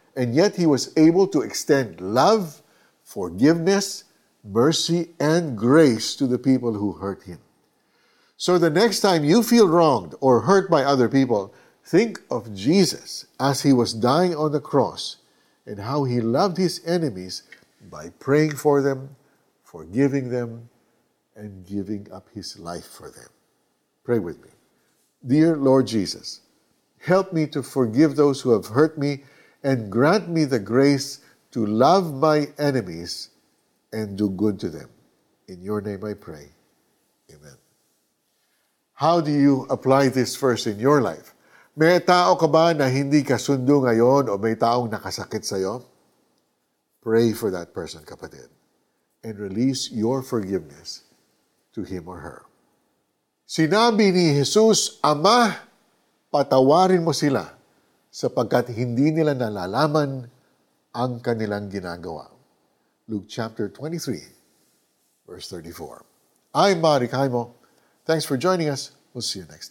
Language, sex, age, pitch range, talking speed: Filipino, male, 50-69, 115-155 Hz, 140 wpm